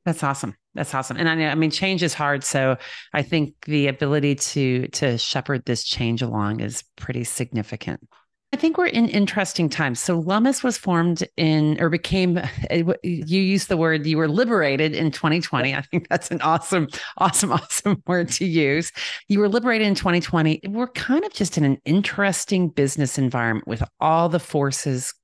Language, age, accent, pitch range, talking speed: English, 40-59, American, 125-165 Hz, 180 wpm